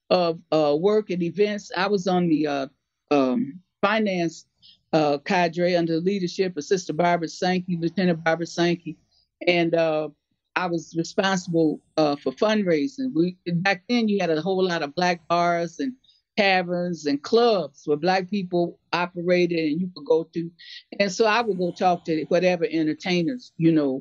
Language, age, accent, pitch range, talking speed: English, 50-69, American, 150-180 Hz, 165 wpm